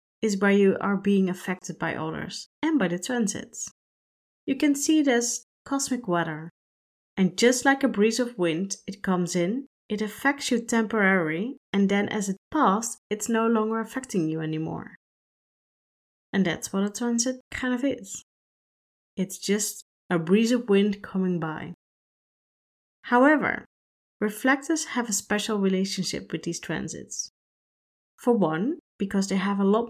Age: 30-49